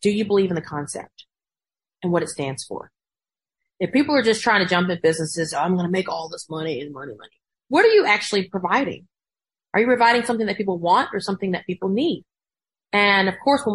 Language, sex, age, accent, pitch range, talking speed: English, female, 30-49, American, 170-220 Hz, 225 wpm